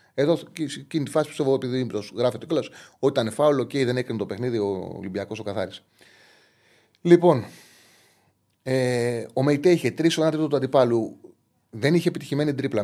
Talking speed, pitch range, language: 175 wpm, 130-175 Hz, Greek